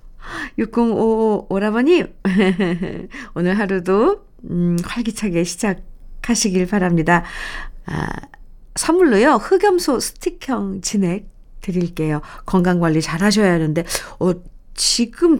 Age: 50-69